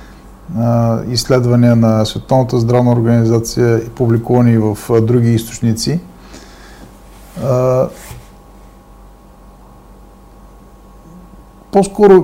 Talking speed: 50 wpm